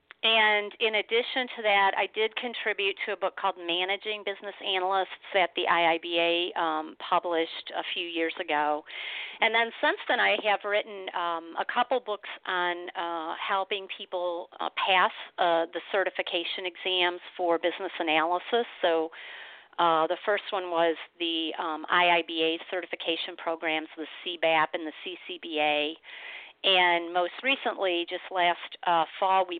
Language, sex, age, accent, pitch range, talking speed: English, female, 50-69, American, 165-195 Hz, 145 wpm